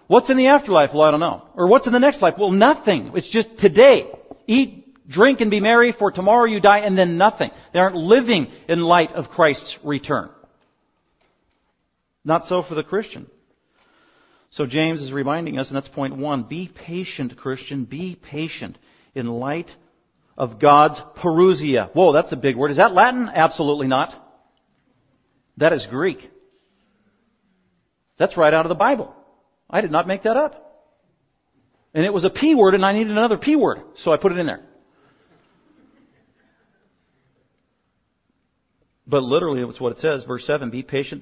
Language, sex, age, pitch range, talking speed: English, male, 50-69, 140-205 Hz, 170 wpm